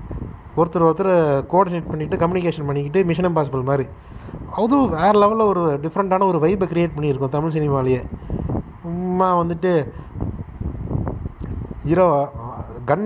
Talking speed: 110 wpm